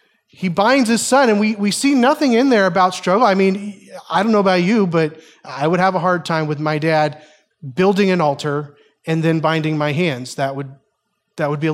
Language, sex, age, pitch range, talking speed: English, male, 30-49, 150-195 Hz, 225 wpm